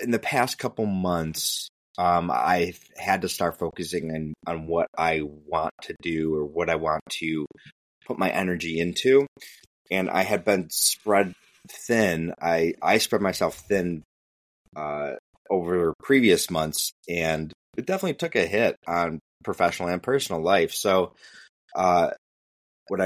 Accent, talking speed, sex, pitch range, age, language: American, 145 wpm, male, 80-95 Hz, 30-49, English